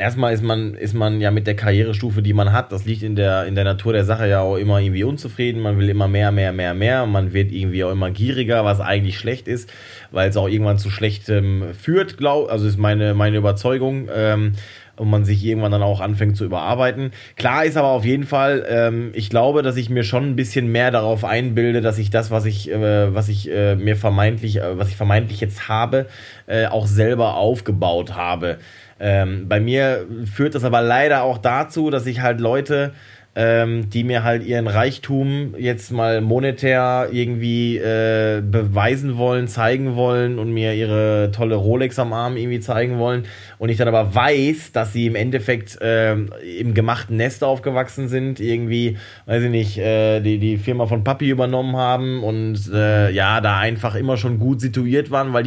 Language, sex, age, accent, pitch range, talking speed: German, male, 20-39, German, 105-125 Hz, 200 wpm